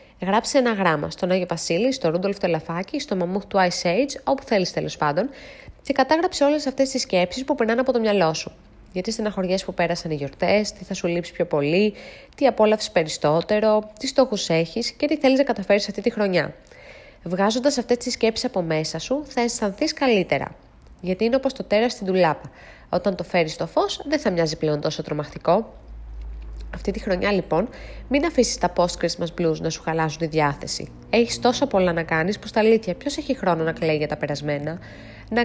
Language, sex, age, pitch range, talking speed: Greek, female, 20-39, 165-240 Hz, 195 wpm